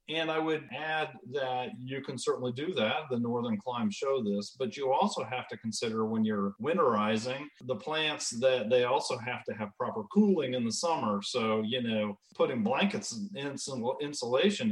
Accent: American